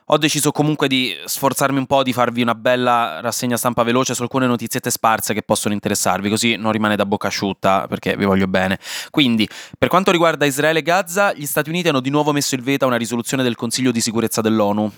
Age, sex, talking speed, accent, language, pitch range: 20-39, male, 220 wpm, native, Italian, 110-140 Hz